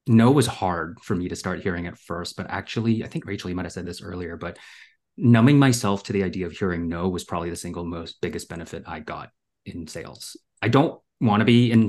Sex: male